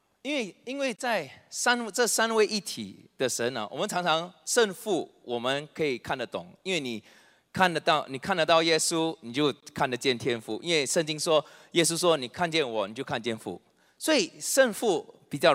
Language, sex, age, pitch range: Chinese, male, 30-49, 160-225 Hz